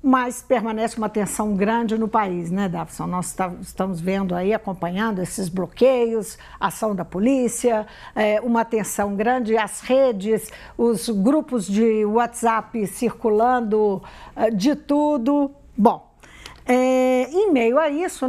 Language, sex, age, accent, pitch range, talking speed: Portuguese, female, 60-79, Brazilian, 200-250 Hz, 130 wpm